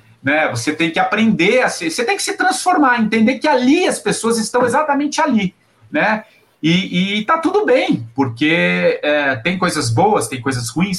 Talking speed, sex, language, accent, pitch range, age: 185 wpm, male, Portuguese, Brazilian, 130-210 Hz, 40-59